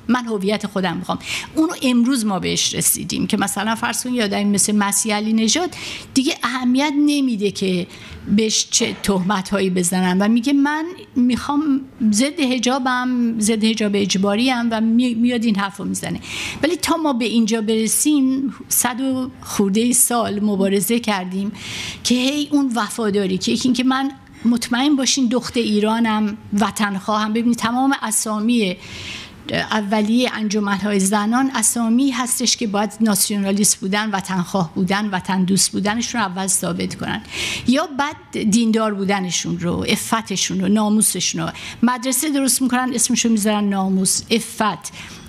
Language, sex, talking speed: Persian, female, 140 wpm